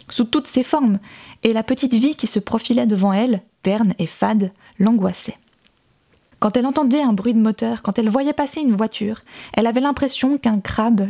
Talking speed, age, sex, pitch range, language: 190 wpm, 20-39, female, 205-235 Hz, French